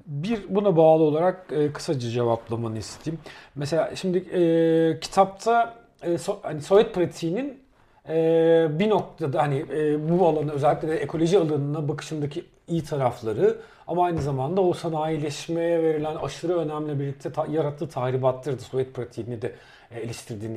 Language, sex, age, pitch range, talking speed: Turkish, male, 40-59, 145-180 Hz, 145 wpm